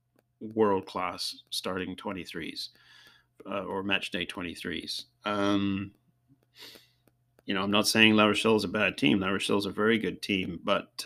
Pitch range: 100-115 Hz